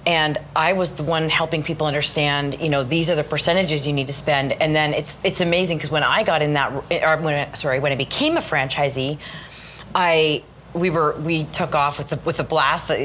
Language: English